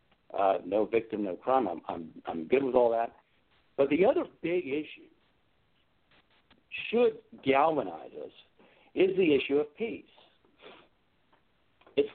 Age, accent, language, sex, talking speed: 60-79, American, English, male, 130 wpm